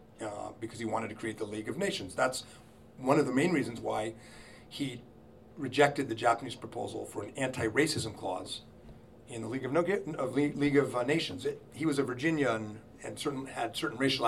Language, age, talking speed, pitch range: English, 40-59, 195 wpm, 115-145 Hz